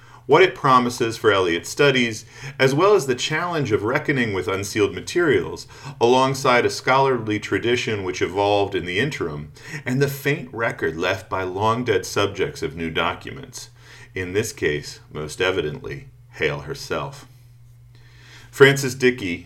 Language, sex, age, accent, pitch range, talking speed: English, male, 40-59, American, 105-135 Hz, 135 wpm